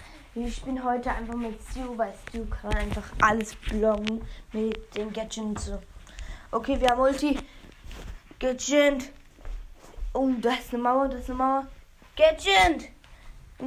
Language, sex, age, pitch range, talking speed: German, female, 20-39, 230-300 Hz, 140 wpm